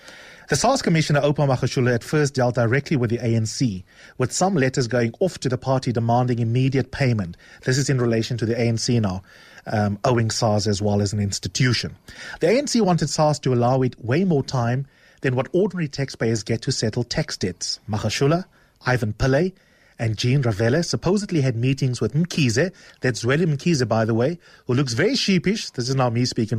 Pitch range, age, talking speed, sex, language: 115-155 Hz, 30-49, 190 wpm, male, English